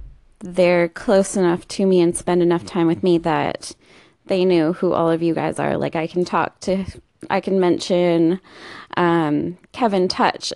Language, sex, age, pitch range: English, female, 20-39, 170-195 Hz